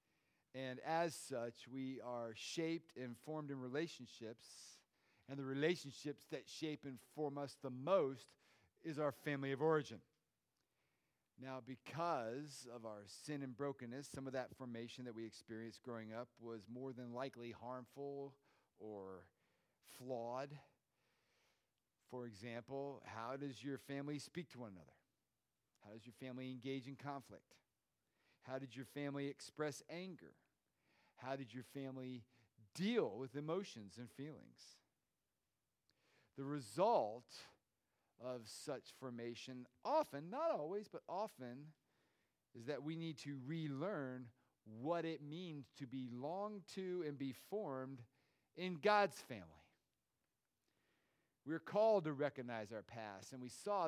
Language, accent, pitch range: English, American, 120-150 Hz